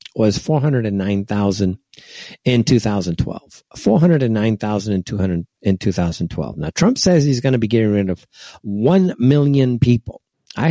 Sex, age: male, 50-69